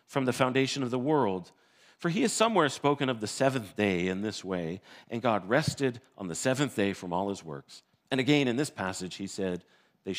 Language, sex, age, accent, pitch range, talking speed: English, male, 50-69, American, 90-135 Hz, 220 wpm